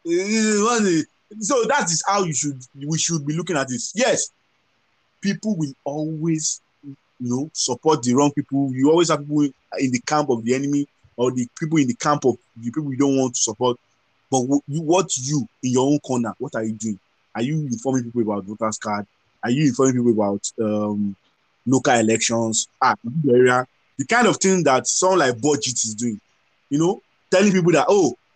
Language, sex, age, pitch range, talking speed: English, male, 20-39, 125-180 Hz, 195 wpm